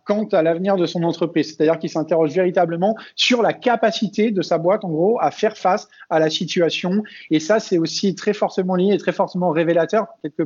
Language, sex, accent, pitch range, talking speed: French, male, French, 155-190 Hz, 205 wpm